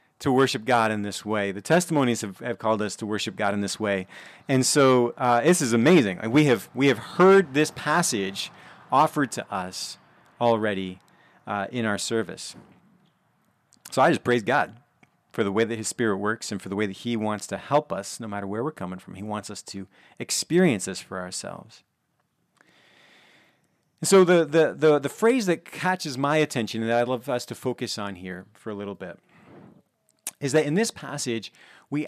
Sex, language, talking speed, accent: male, English, 195 wpm, American